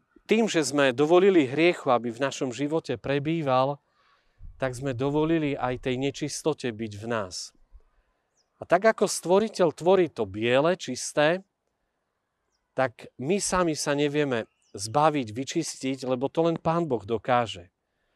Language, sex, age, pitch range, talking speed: Slovak, male, 40-59, 130-170 Hz, 130 wpm